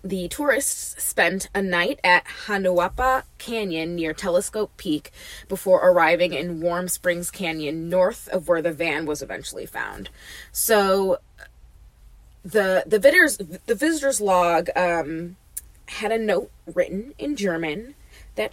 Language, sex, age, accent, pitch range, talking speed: English, female, 20-39, American, 170-225 Hz, 130 wpm